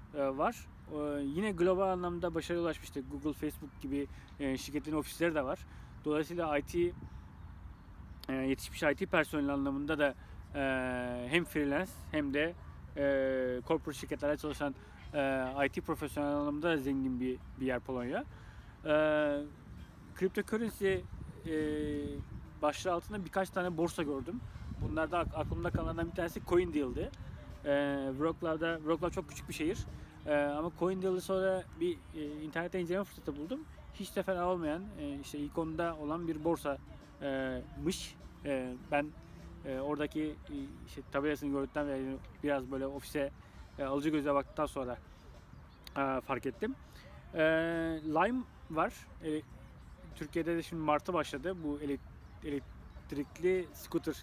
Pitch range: 135-165 Hz